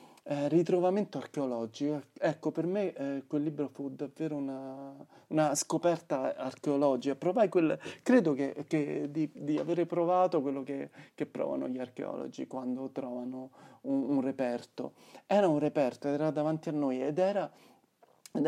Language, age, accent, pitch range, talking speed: Italian, 30-49, native, 120-160 Hz, 125 wpm